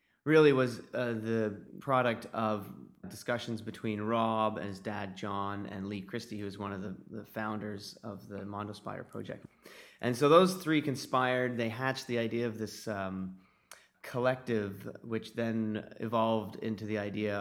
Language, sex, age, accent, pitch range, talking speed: English, male, 30-49, American, 100-115 Hz, 160 wpm